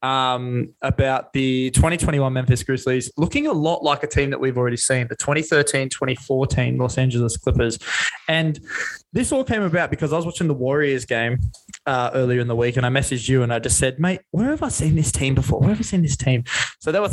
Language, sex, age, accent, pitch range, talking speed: English, male, 20-39, Australian, 125-145 Hz, 220 wpm